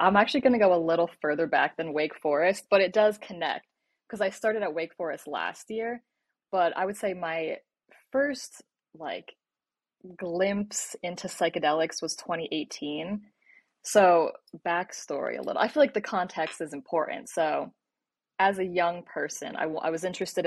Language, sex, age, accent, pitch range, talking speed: English, female, 20-39, American, 165-200 Hz, 165 wpm